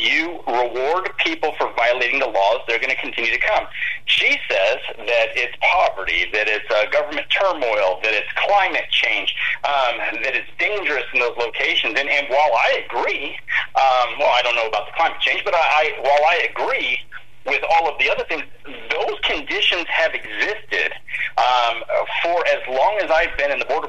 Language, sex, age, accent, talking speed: English, male, 40-59, American, 180 wpm